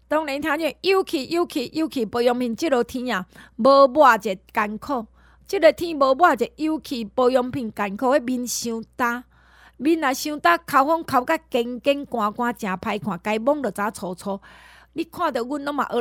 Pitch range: 215-305 Hz